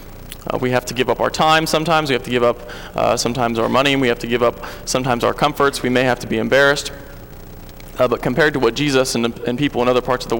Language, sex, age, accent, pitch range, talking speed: English, male, 20-39, American, 120-140 Hz, 265 wpm